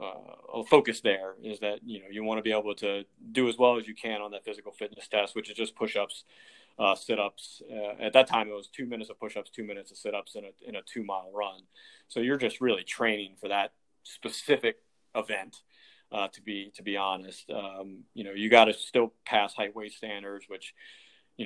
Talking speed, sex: 225 wpm, male